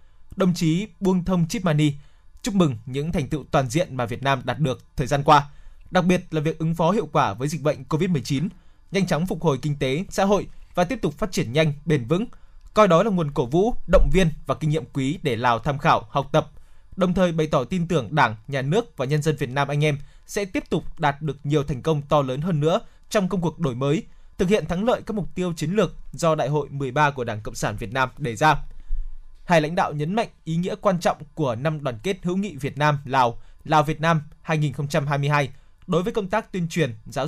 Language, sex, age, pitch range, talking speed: Vietnamese, male, 20-39, 145-180 Hz, 240 wpm